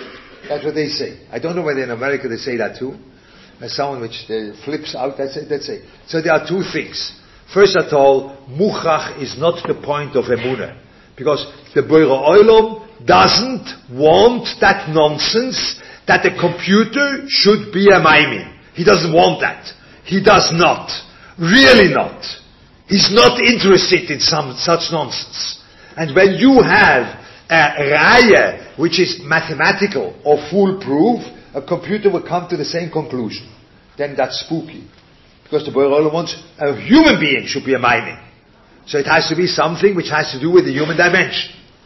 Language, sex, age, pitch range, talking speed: English, male, 50-69, 140-195 Hz, 170 wpm